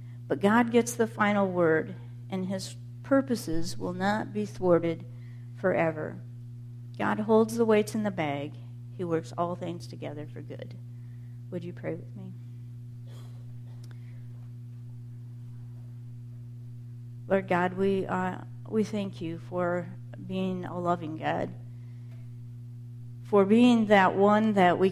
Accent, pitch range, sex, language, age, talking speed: American, 120-175 Hz, female, English, 50-69, 125 wpm